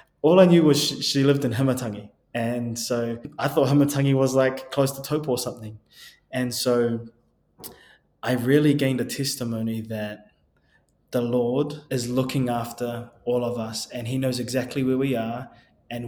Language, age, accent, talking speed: English, 20-39, Australian, 165 wpm